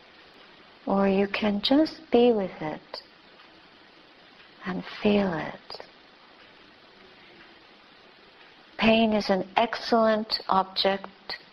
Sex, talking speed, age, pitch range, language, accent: female, 80 wpm, 60-79, 185-220 Hz, English, American